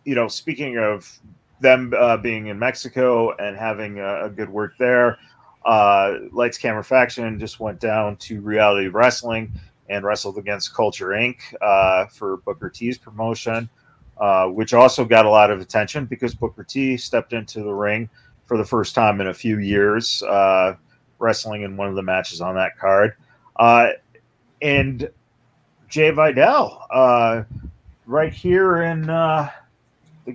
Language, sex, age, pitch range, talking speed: English, male, 30-49, 105-125 Hz, 155 wpm